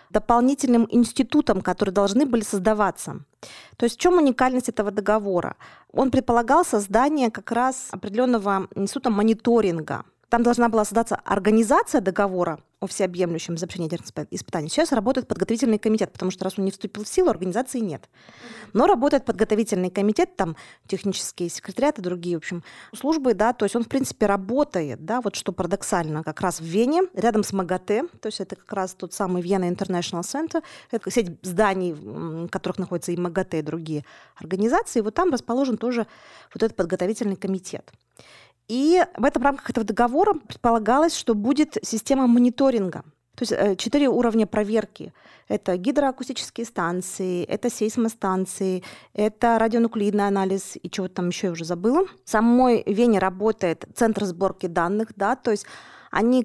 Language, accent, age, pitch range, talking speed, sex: Russian, native, 20-39, 190-240 Hz, 155 wpm, female